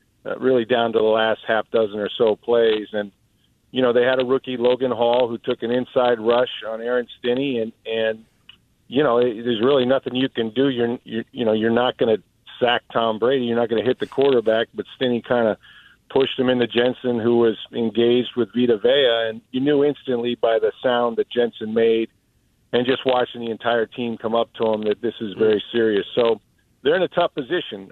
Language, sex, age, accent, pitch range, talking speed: English, male, 50-69, American, 115-130 Hz, 215 wpm